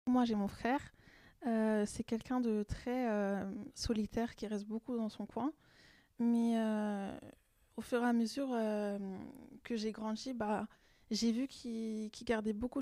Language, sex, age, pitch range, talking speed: French, female, 20-39, 210-235 Hz, 165 wpm